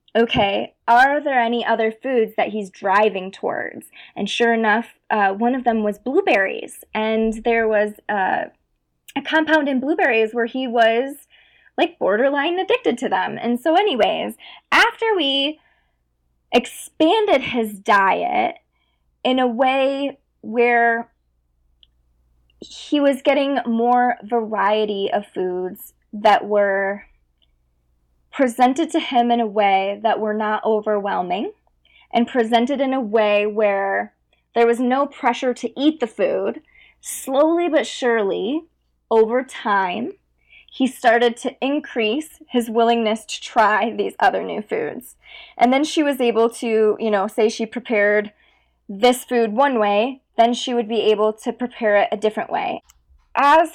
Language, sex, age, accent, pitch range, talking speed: English, female, 20-39, American, 210-275 Hz, 140 wpm